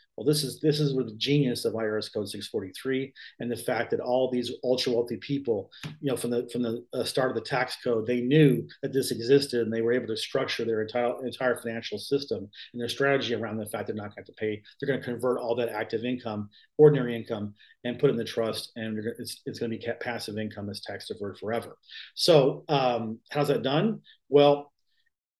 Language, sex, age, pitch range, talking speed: English, male, 40-59, 115-150 Hz, 225 wpm